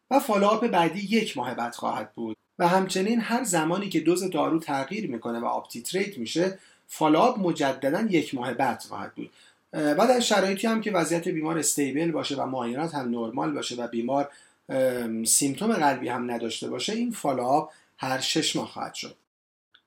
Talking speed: 165 wpm